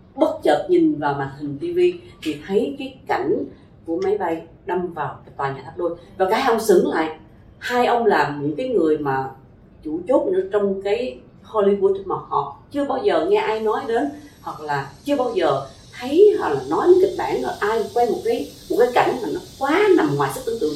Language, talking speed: Vietnamese, 215 wpm